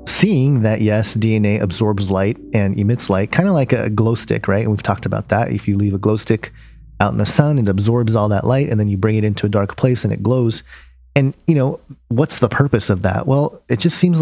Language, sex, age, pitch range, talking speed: English, male, 30-49, 105-135 Hz, 255 wpm